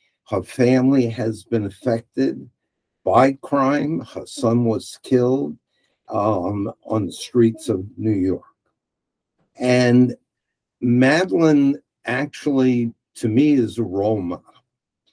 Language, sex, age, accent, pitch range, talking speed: English, male, 60-79, American, 105-130 Hz, 105 wpm